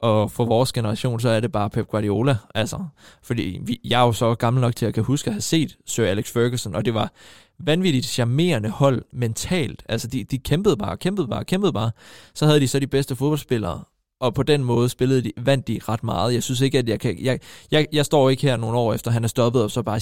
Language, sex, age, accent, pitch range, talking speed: Danish, male, 20-39, native, 110-135 Hz, 250 wpm